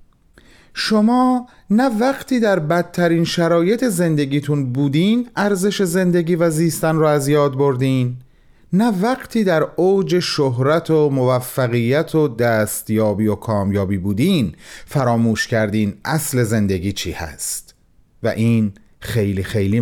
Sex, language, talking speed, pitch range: male, Persian, 115 wpm, 120-180 Hz